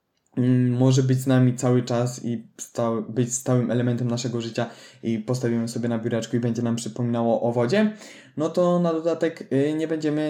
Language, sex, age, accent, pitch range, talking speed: Polish, male, 20-39, native, 115-145 Hz, 170 wpm